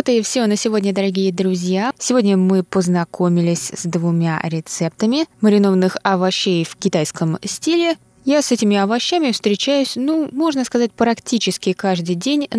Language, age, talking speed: Russian, 20-39, 140 wpm